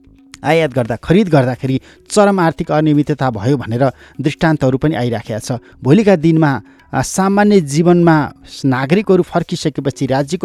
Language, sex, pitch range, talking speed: English, male, 125-165 Hz, 120 wpm